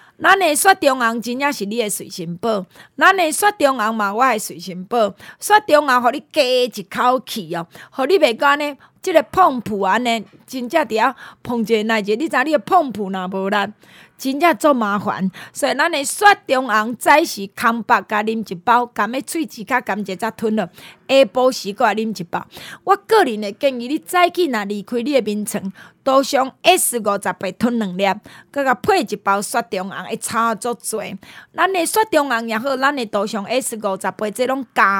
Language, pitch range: Chinese, 205-280 Hz